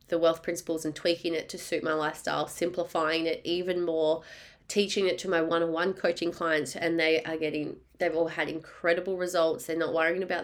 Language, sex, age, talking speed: English, female, 20-39, 190 wpm